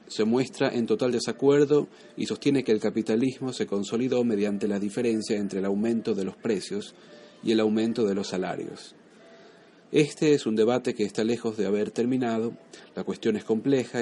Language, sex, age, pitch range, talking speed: Spanish, male, 40-59, 105-125 Hz, 175 wpm